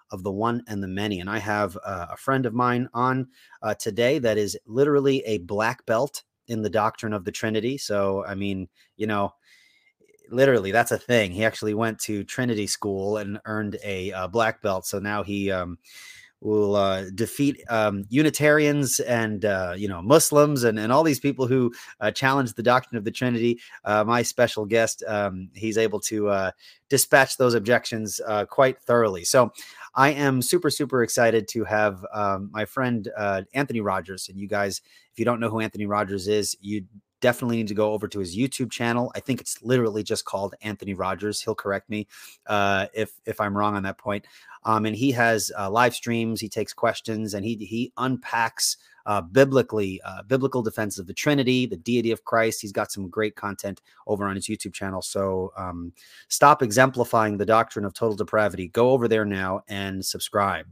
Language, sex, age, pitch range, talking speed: English, male, 30-49, 100-120 Hz, 195 wpm